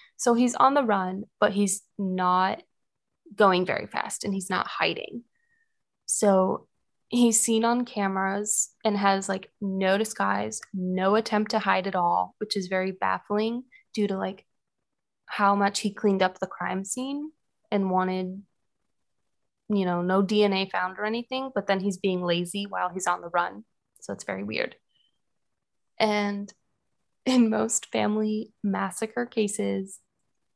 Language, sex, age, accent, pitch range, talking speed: English, female, 20-39, American, 190-225 Hz, 145 wpm